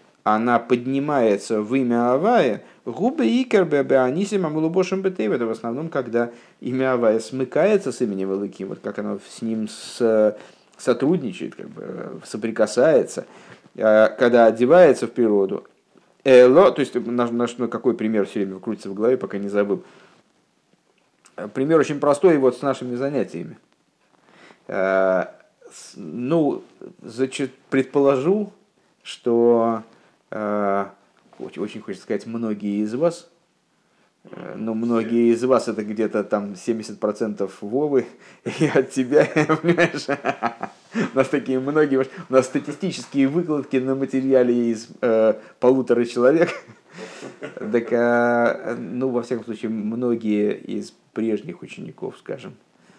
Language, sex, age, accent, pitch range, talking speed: Russian, male, 50-69, native, 110-135 Hz, 120 wpm